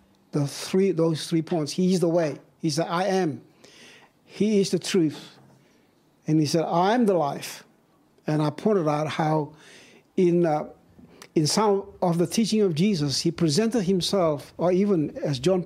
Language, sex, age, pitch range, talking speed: English, male, 60-79, 155-200 Hz, 175 wpm